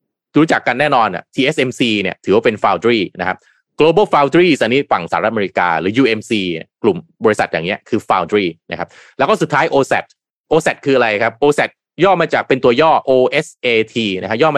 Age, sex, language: 20-39, male, Thai